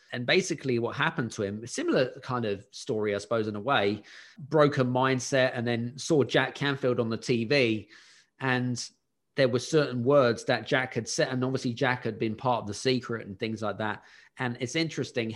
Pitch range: 115-135 Hz